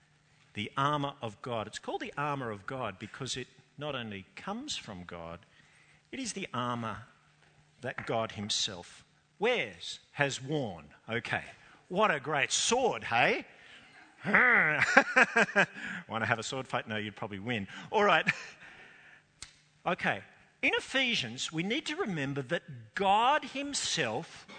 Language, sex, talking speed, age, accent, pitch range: English, male, 135 wpm, 50-69, Australian, 135-200 Hz